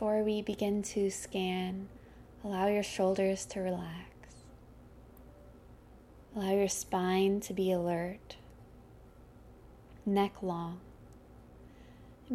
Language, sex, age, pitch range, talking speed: English, female, 20-39, 185-210 Hz, 90 wpm